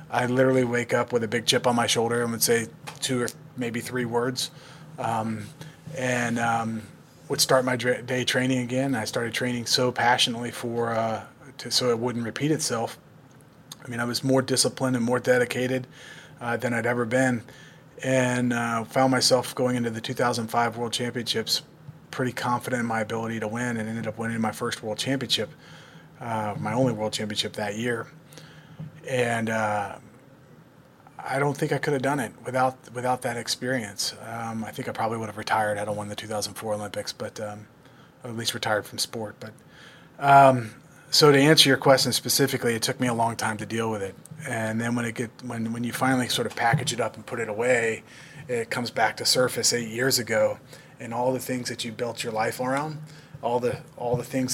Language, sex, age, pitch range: English, male, 30-49, 115-130 Hz